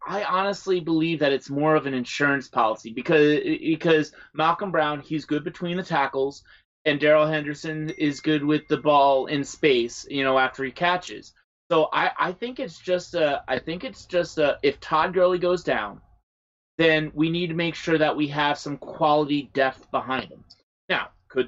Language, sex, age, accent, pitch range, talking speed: English, male, 30-49, American, 145-180 Hz, 185 wpm